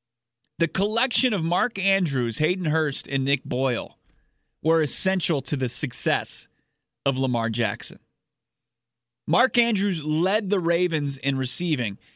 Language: English